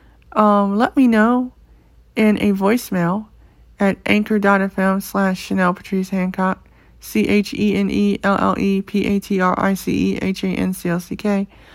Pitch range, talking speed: 190-220 Hz, 70 wpm